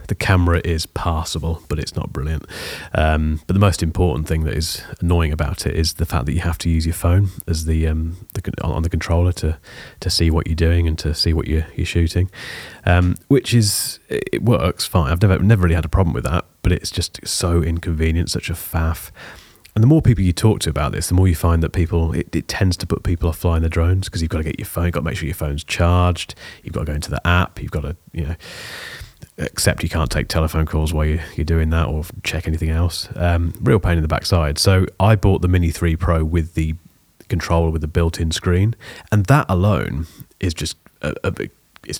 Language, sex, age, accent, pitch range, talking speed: English, male, 30-49, British, 80-95 Hz, 235 wpm